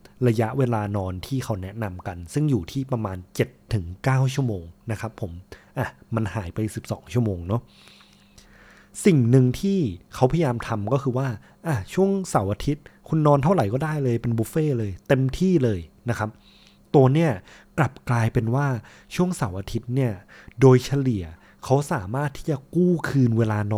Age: 20-39